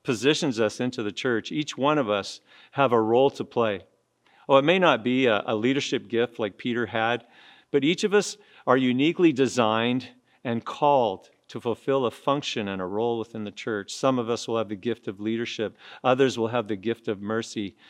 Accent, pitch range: American, 110-135 Hz